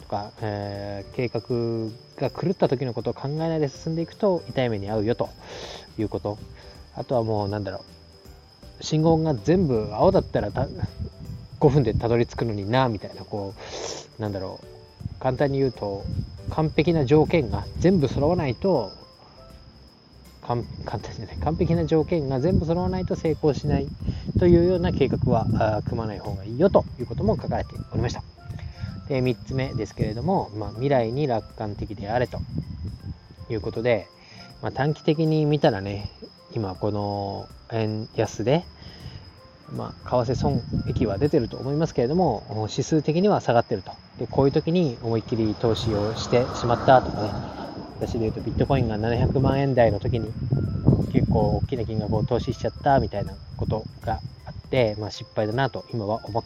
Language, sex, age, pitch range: Japanese, male, 20-39, 105-140 Hz